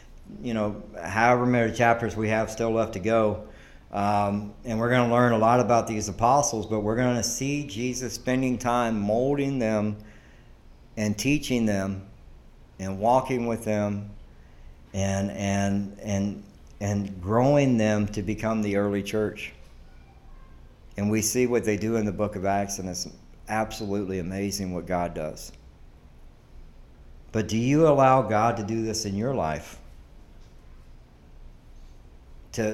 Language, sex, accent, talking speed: English, male, American, 145 wpm